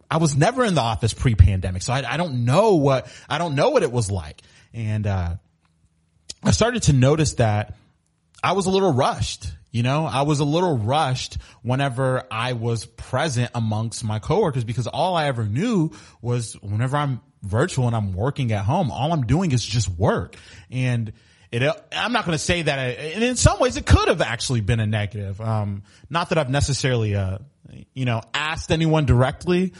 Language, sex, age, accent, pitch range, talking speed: English, male, 30-49, American, 105-150 Hz, 195 wpm